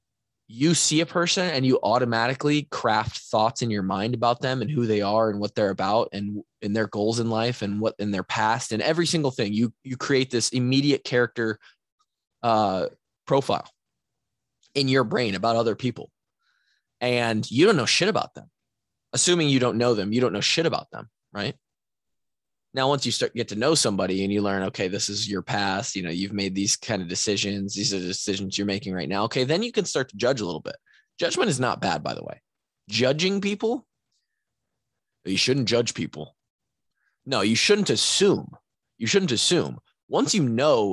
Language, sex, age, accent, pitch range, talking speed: English, male, 20-39, American, 100-135 Hz, 200 wpm